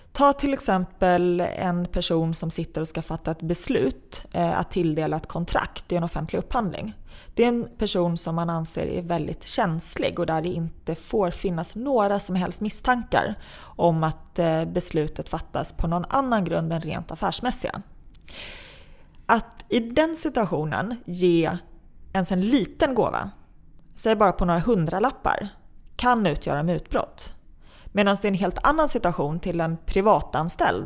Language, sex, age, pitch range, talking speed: Swedish, female, 20-39, 165-215 Hz, 155 wpm